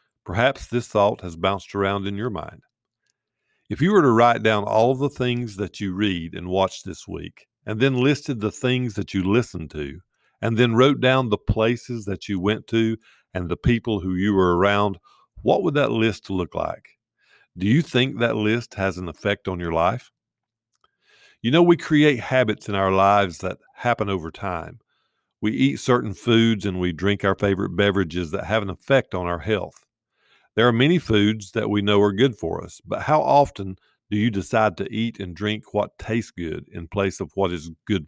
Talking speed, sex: 200 wpm, male